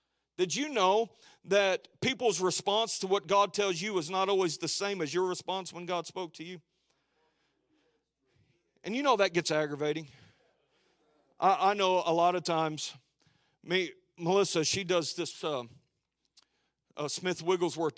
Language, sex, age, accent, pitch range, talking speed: English, male, 40-59, American, 160-200 Hz, 155 wpm